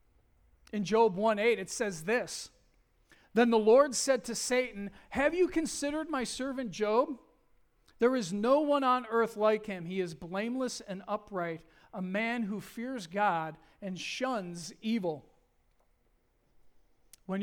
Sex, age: male, 40-59